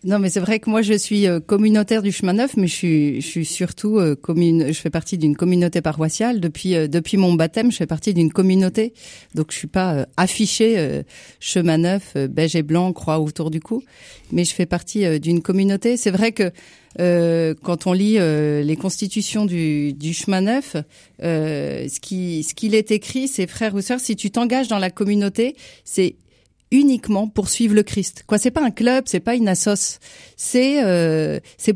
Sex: female